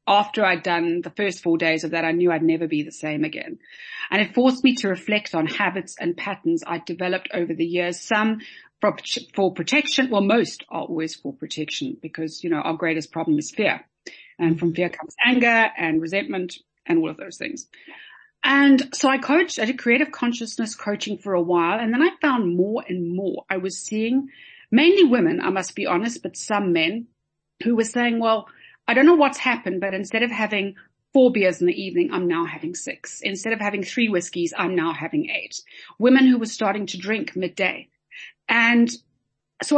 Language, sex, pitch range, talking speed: English, female, 175-265 Hz, 200 wpm